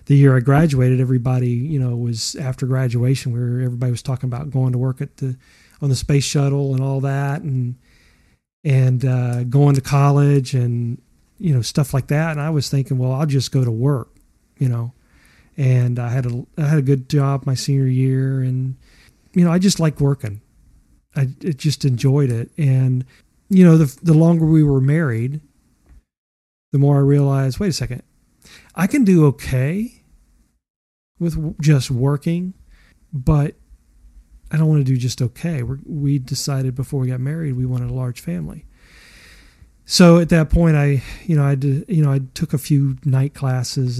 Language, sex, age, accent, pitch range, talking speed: English, male, 40-59, American, 125-145 Hz, 180 wpm